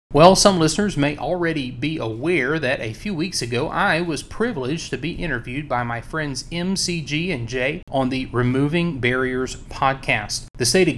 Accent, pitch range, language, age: American, 125-160 Hz, English, 30-49